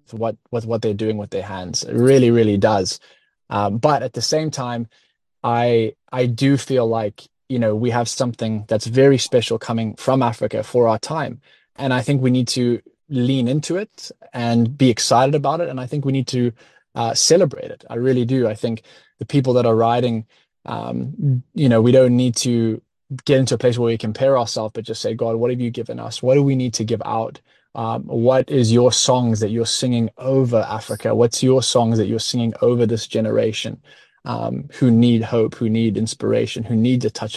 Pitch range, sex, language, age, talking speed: 115-130 Hz, male, English, 20-39, 210 wpm